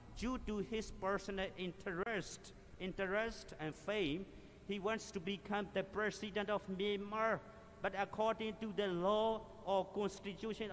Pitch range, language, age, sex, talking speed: 150-210 Hz, English, 50-69, male, 130 wpm